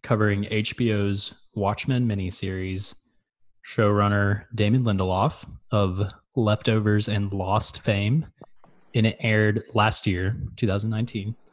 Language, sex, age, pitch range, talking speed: English, male, 20-39, 100-120 Hz, 95 wpm